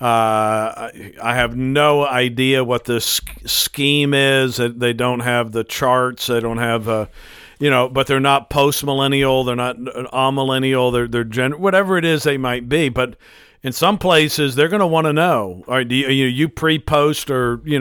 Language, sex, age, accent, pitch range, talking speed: English, male, 50-69, American, 120-140 Hz, 195 wpm